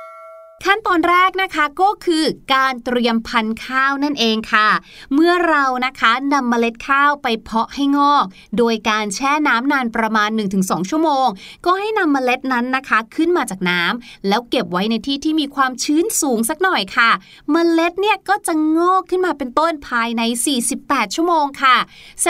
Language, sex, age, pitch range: Thai, female, 30-49, 230-320 Hz